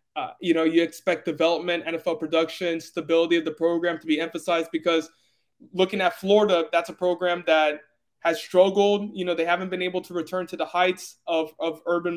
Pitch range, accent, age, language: 160-180 Hz, American, 20-39, English